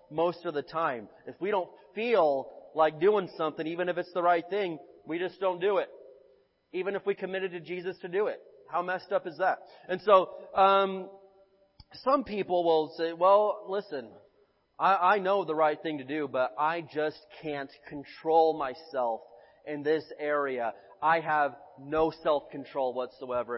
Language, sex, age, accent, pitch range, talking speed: English, male, 30-49, American, 155-200 Hz, 170 wpm